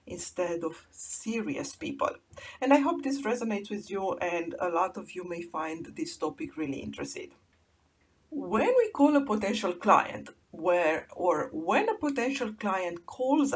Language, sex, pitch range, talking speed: English, female, 180-275 Hz, 155 wpm